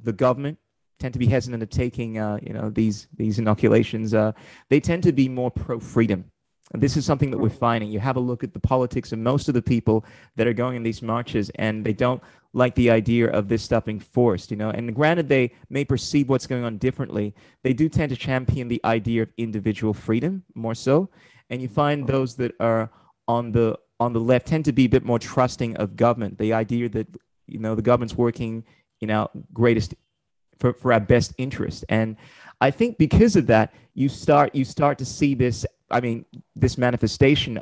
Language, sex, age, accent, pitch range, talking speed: English, male, 30-49, American, 110-130 Hz, 210 wpm